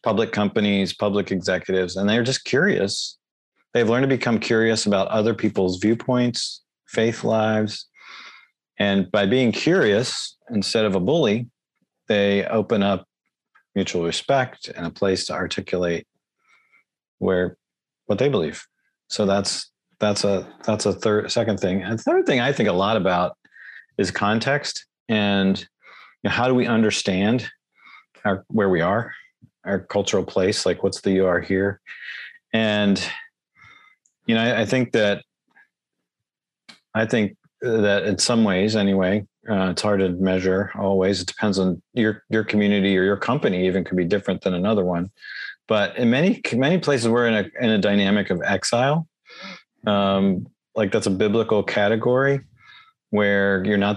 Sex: male